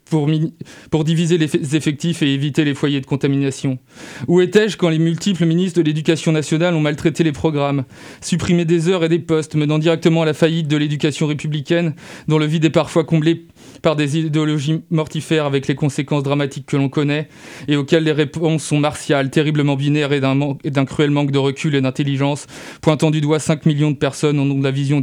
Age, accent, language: 20-39, French, French